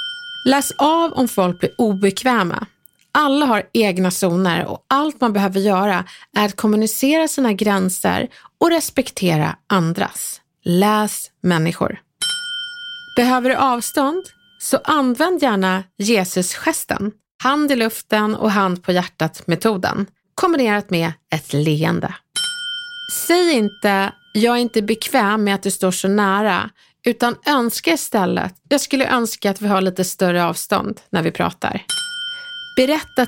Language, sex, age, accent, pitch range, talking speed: Swedish, female, 30-49, native, 185-275 Hz, 130 wpm